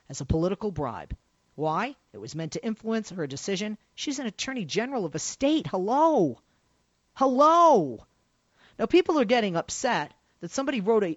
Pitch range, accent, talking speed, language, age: 170-265 Hz, American, 155 wpm, English, 40-59